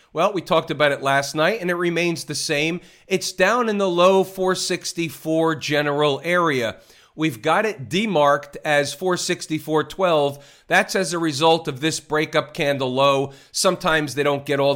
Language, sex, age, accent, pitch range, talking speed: English, male, 40-59, American, 145-175 Hz, 165 wpm